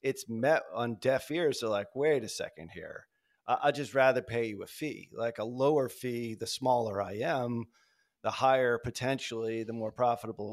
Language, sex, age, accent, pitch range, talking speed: English, male, 30-49, American, 115-145 Hz, 180 wpm